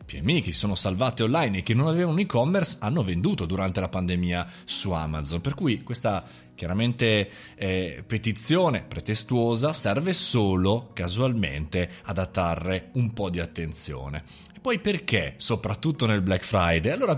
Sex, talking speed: male, 150 wpm